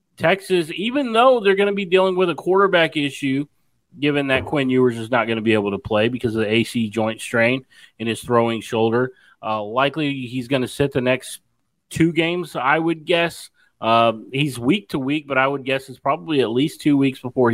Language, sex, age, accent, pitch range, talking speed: English, male, 30-49, American, 115-140 Hz, 215 wpm